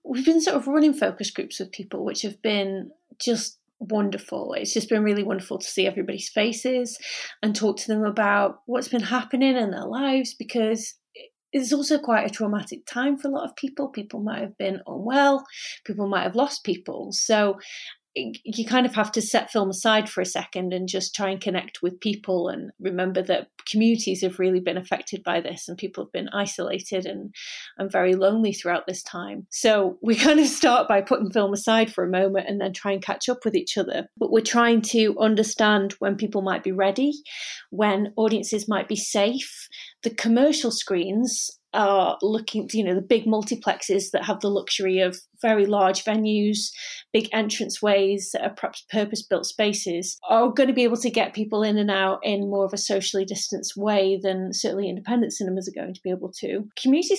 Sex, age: female, 30-49